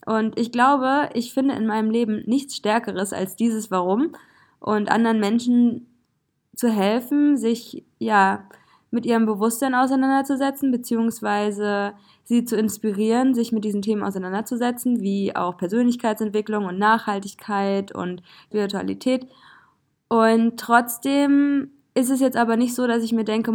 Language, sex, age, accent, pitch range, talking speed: German, female, 20-39, German, 210-245 Hz, 130 wpm